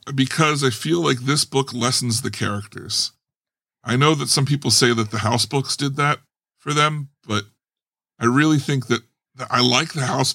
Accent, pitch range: American, 110-135 Hz